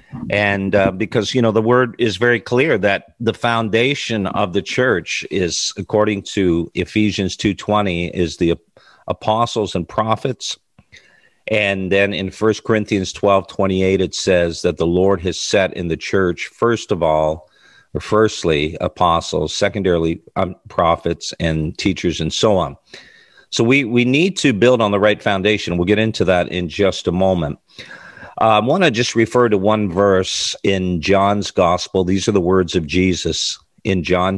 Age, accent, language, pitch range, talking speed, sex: 50-69, American, English, 85-105 Hz, 165 wpm, male